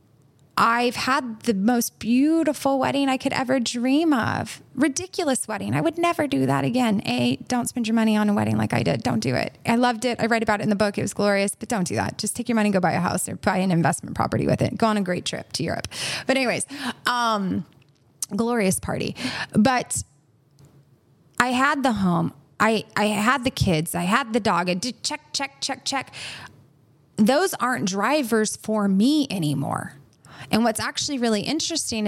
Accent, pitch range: American, 180-245 Hz